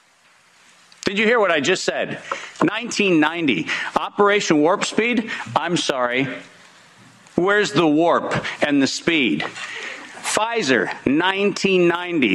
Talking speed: 100 wpm